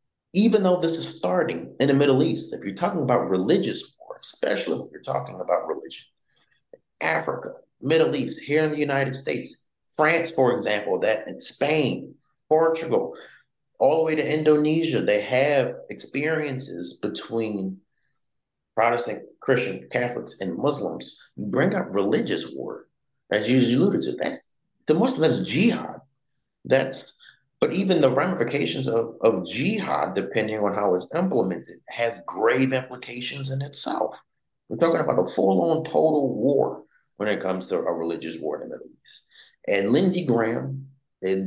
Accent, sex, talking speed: American, male, 150 wpm